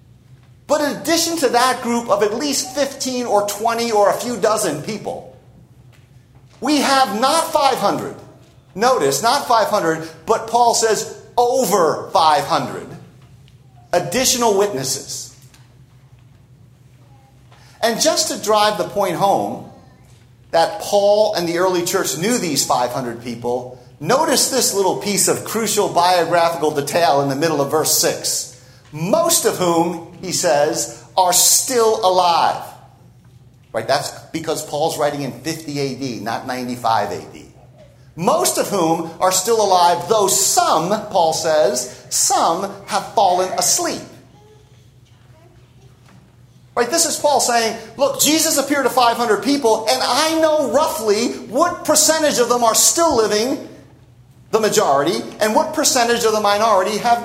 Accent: American